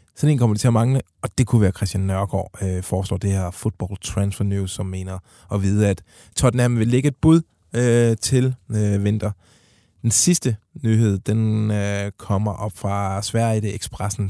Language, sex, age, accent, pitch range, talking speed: Danish, male, 20-39, native, 105-130 Hz, 185 wpm